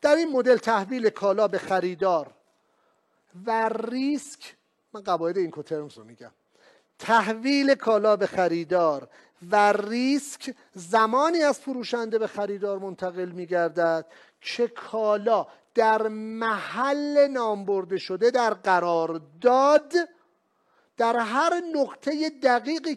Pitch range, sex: 195-255 Hz, male